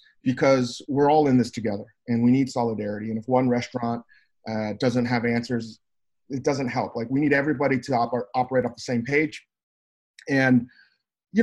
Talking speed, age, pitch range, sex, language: 180 wpm, 30-49, 120-150 Hz, male, English